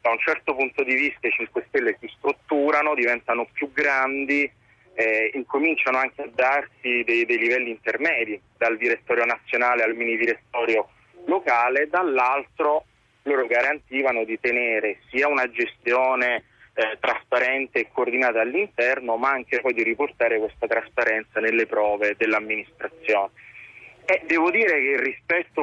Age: 30-49